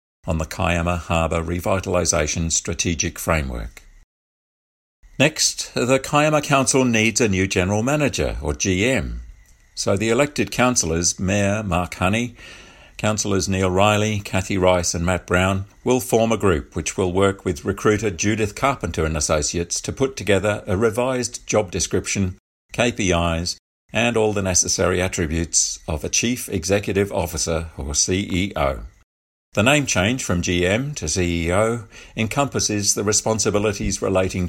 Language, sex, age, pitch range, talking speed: English, male, 50-69, 85-110 Hz, 135 wpm